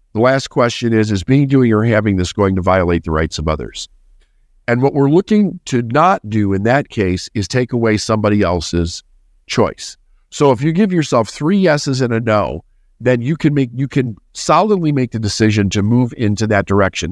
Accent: American